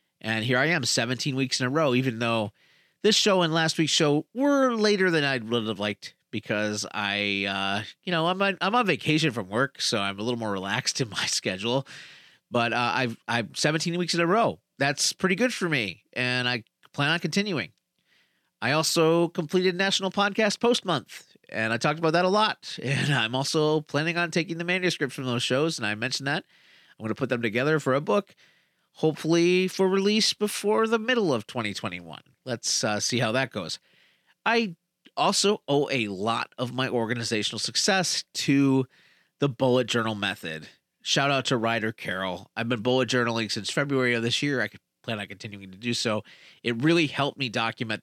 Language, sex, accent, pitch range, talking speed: English, male, American, 110-165 Hz, 195 wpm